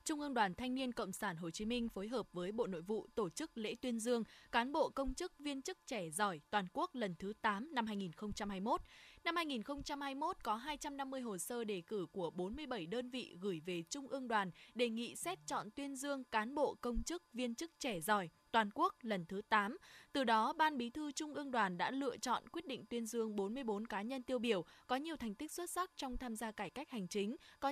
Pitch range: 210-275 Hz